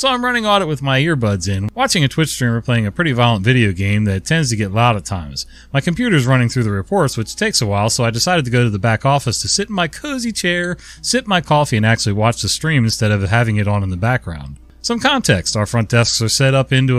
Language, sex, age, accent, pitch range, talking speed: English, male, 30-49, American, 100-140 Hz, 265 wpm